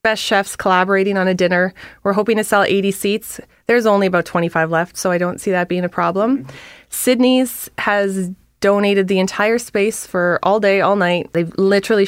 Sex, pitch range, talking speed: female, 180-215 Hz, 195 wpm